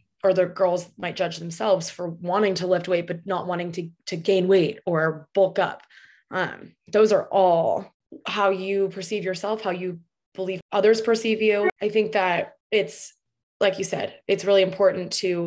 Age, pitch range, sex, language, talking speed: 20-39, 170-190 Hz, female, English, 180 wpm